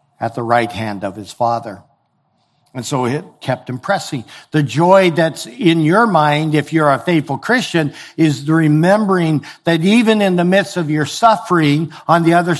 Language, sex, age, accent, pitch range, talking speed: English, male, 60-79, American, 140-170 Hz, 175 wpm